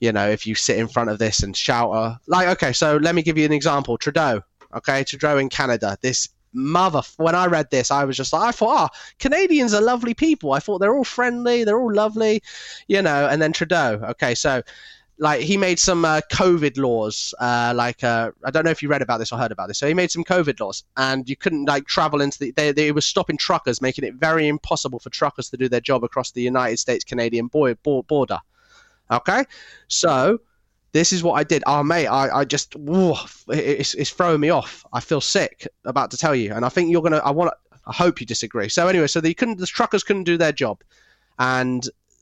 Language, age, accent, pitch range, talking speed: English, 20-39, British, 120-165 Hz, 235 wpm